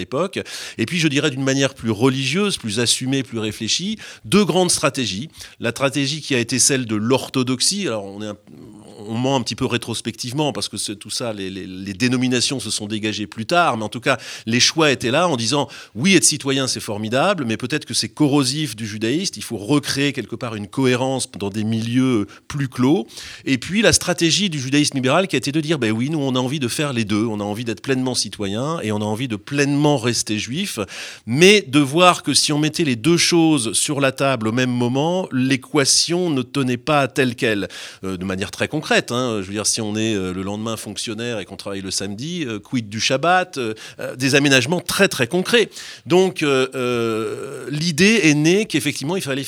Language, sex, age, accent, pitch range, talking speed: French, male, 30-49, French, 110-155 Hz, 220 wpm